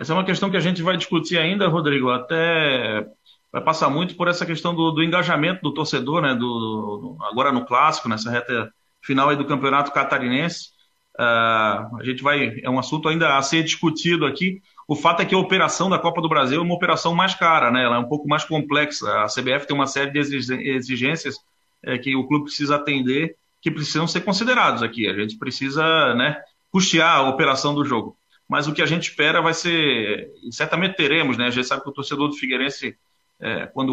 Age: 30-49